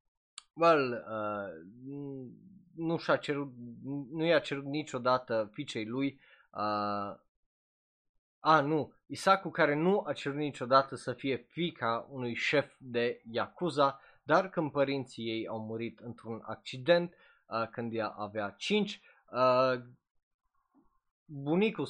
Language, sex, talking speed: Romanian, male, 110 wpm